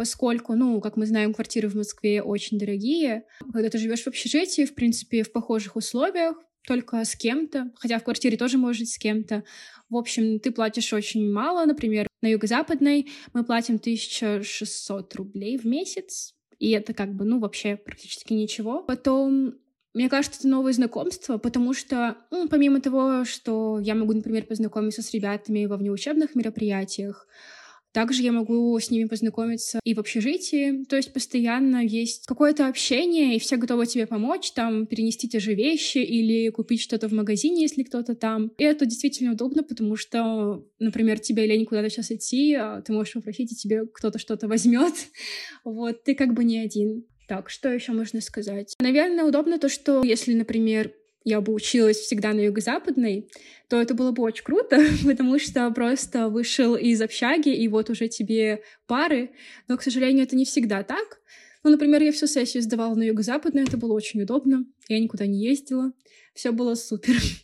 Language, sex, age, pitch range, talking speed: Russian, female, 20-39, 220-265 Hz, 170 wpm